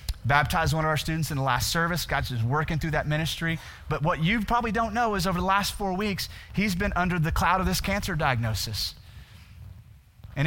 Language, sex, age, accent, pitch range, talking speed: English, male, 30-49, American, 115-185 Hz, 210 wpm